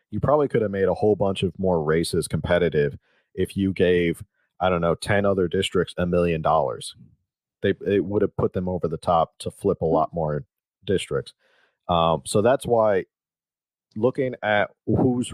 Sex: male